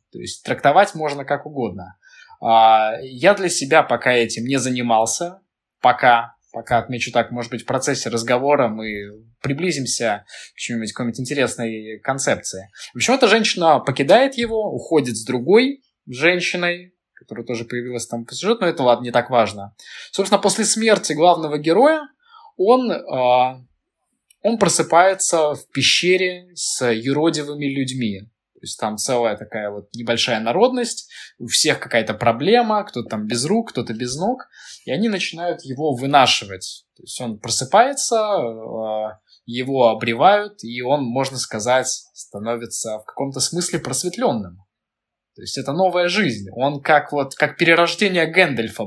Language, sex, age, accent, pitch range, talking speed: Russian, male, 20-39, native, 120-175 Hz, 140 wpm